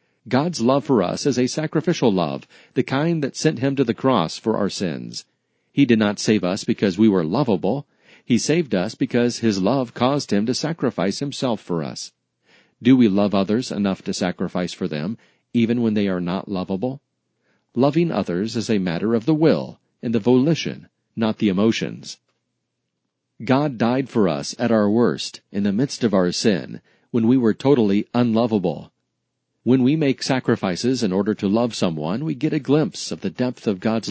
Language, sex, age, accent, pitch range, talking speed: English, male, 40-59, American, 100-130 Hz, 185 wpm